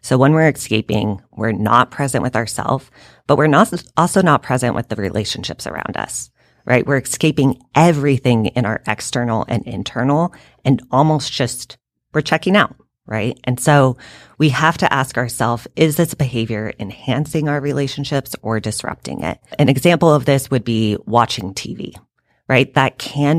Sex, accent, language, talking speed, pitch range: female, American, English, 160 wpm, 110-145 Hz